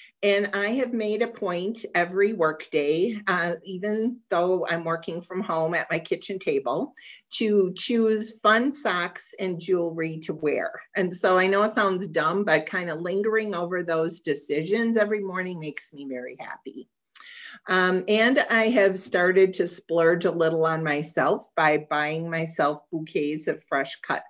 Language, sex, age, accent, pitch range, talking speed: English, female, 40-59, American, 165-210 Hz, 160 wpm